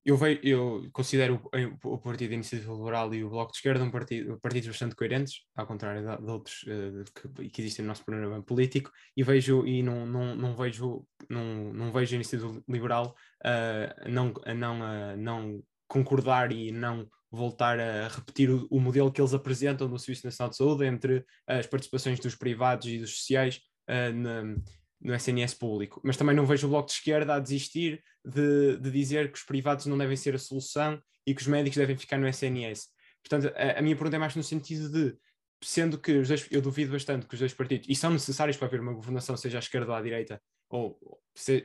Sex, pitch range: male, 120-145 Hz